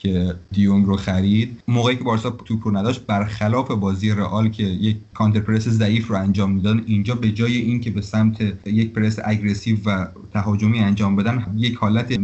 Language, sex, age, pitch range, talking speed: Persian, male, 30-49, 100-115 Hz, 170 wpm